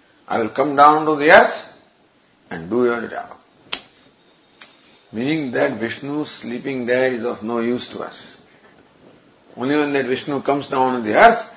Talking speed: 160 wpm